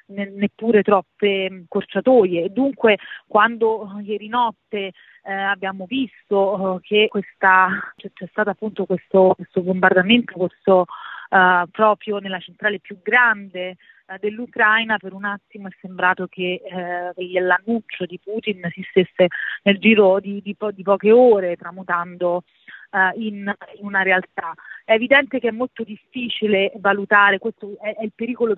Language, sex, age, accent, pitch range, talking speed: Italian, female, 30-49, native, 190-220 Hz, 140 wpm